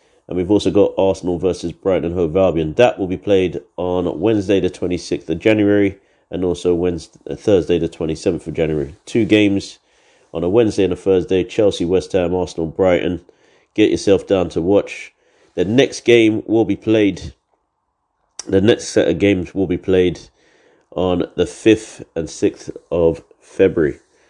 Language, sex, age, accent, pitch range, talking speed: English, male, 30-49, British, 90-110 Hz, 165 wpm